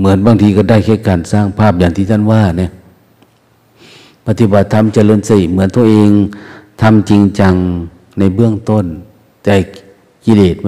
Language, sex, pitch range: Thai, male, 90-110 Hz